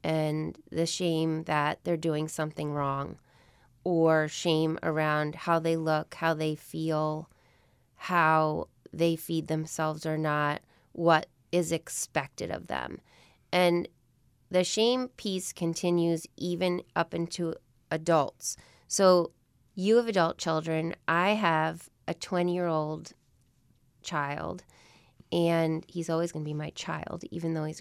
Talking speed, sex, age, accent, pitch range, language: 125 wpm, female, 30-49, American, 155-180 Hz, English